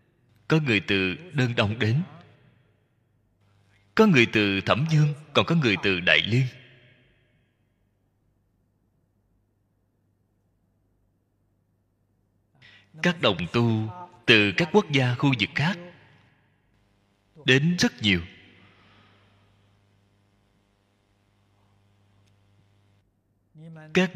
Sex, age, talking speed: male, 20-39, 75 wpm